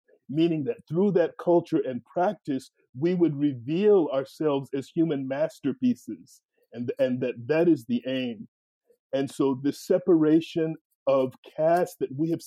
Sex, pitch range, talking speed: male, 145-180 Hz, 145 wpm